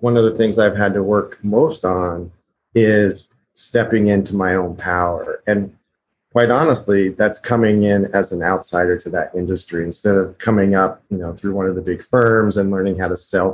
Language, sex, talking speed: English, male, 200 wpm